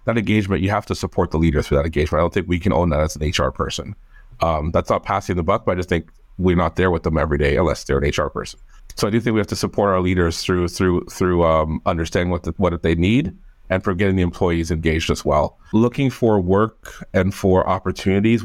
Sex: male